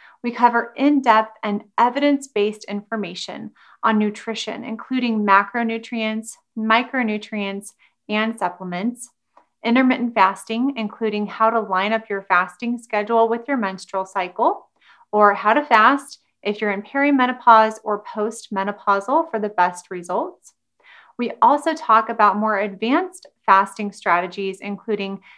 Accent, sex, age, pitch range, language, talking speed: American, female, 30-49, 200-245 Hz, English, 120 wpm